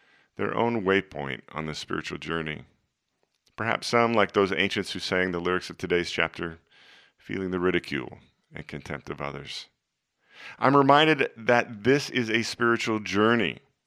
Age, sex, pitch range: 40-59, male, 80-100 Hz